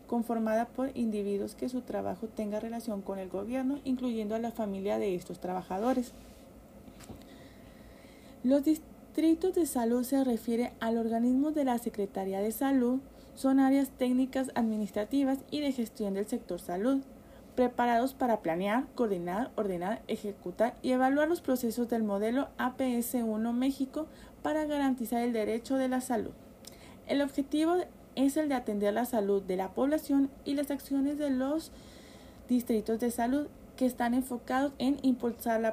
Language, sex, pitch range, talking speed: Spanish, female, 215-265 Hz, 150 wpm